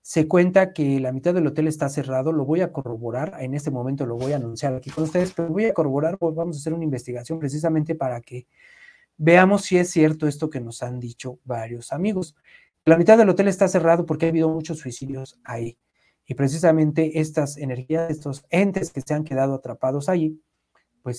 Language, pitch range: Spanish, 135-170 Hz